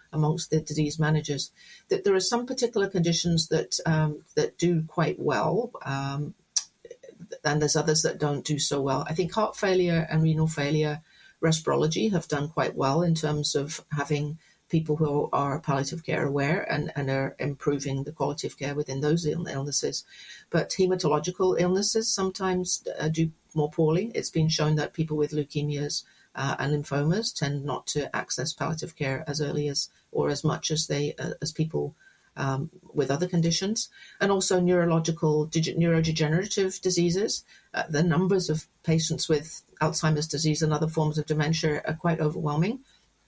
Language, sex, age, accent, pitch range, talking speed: English, female, 40-59, British, 150-170 Hz, 160 wpm